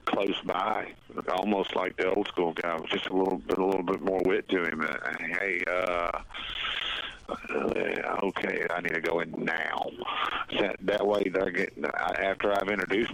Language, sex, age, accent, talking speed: English, male, 40-59, American, 160 wpm